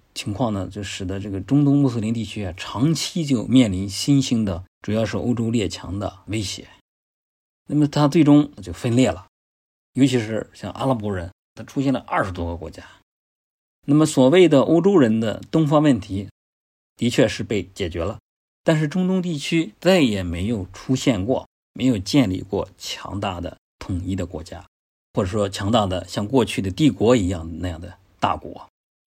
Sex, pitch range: male, 90-120 Hz